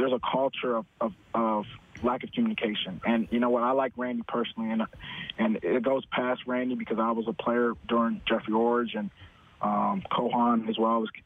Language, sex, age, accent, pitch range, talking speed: English, male, 20-39, American, 115-125 Hz, 195 wpm